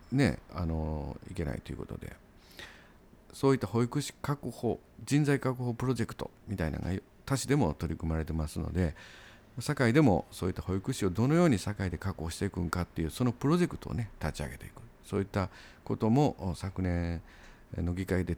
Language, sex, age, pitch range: Japanese, male, 50-69, 85-120 Hz